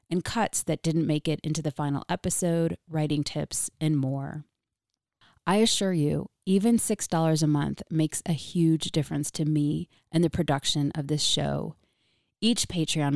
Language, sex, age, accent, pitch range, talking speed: English, female, 30-49, American, 145-170 Hz, 160 wpm